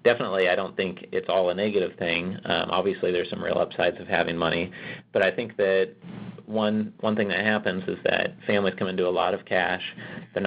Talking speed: 210 wpm